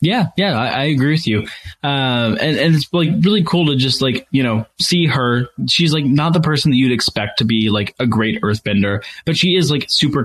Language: English